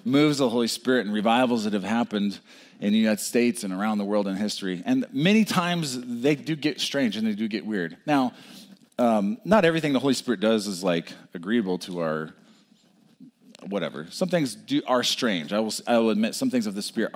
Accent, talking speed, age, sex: American, 215 wpm, 40-59, male